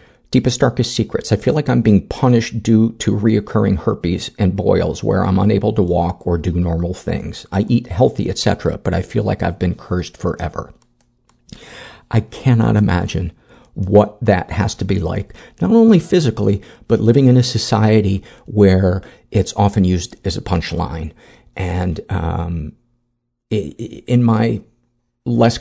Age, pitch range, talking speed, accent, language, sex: 50-69, 90-120 Hz, 150 wpm, American, English, male